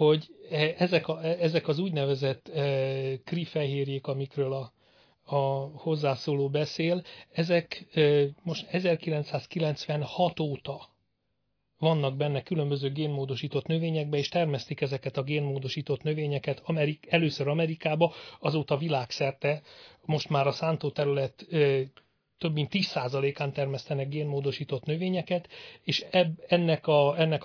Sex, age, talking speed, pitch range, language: male, 40-59, 115 wpm, 140-160 Hz, Hungarian